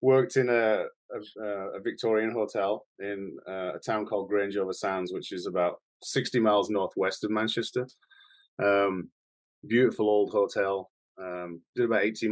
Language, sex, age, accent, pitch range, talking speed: English, male, 30-49, British, 90-110 Hz, 145 wpm